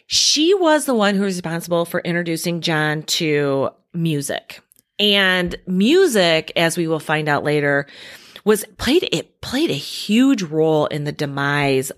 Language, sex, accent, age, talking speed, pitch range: English, female, American, 30-49, 150 wpm, 155-235 Hz